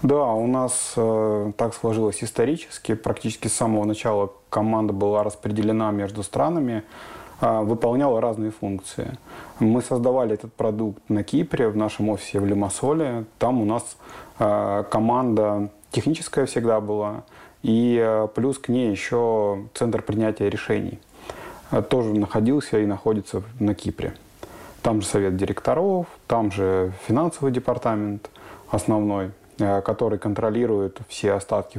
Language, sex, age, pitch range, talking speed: Russian, male, 20-39, 100-115 Hz, 125 wpm